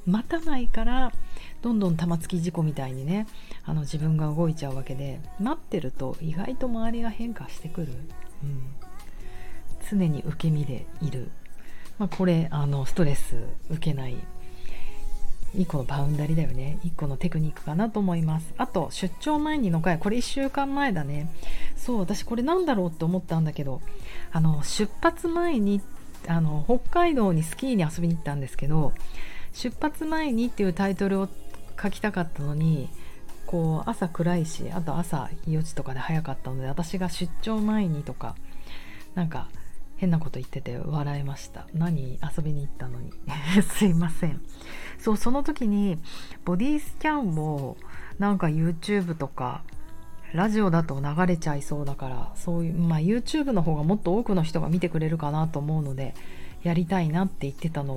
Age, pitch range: 40-59, 145-195 Hz